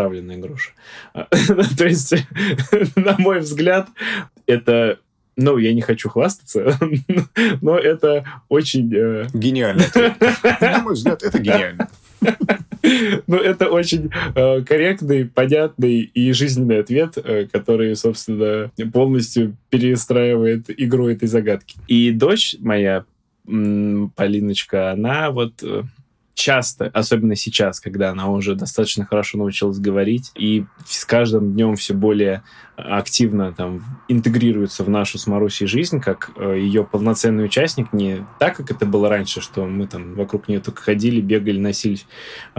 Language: Russian